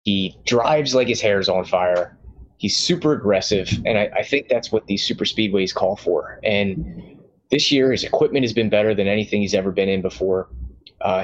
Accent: American